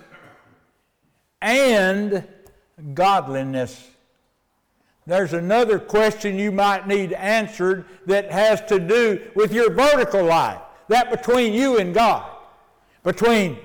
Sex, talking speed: male, 100 wpm